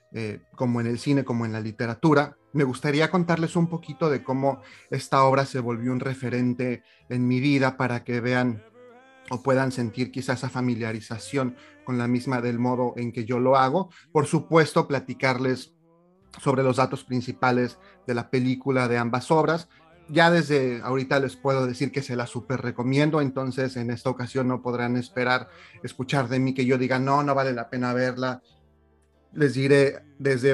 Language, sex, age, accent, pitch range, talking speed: Spanish, male, 30-49, Mexican, 125-145 Hz, 175 wpm